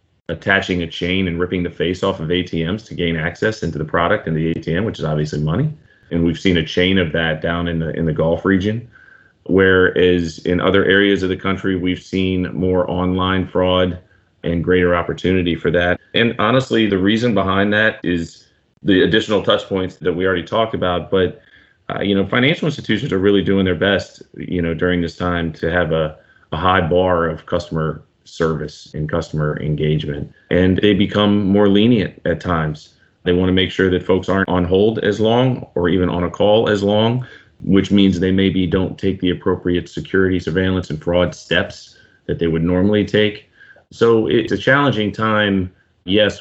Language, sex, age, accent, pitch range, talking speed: English, male, 30-49, American, 85-95 Hz, 190 wpm